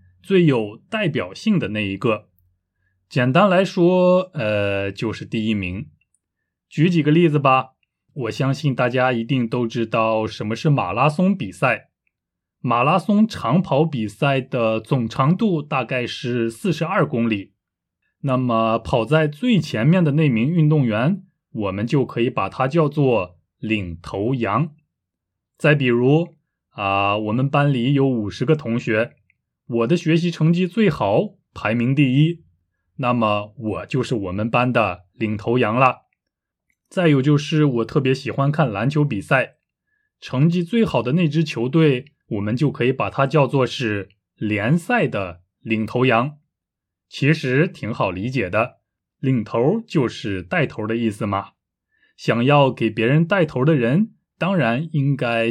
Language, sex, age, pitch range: Chinese, male, 20-39, 110-155 Hz